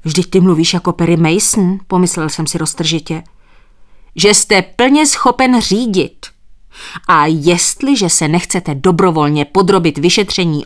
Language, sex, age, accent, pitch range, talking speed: Czech, female, 30-49, native, 135-200 Hz, 125 wpm